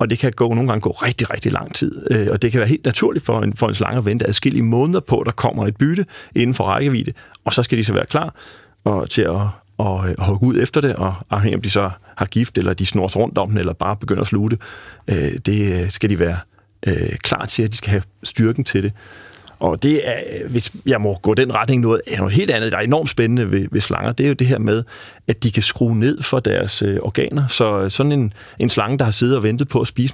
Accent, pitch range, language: native, 105-130 Hz, Danish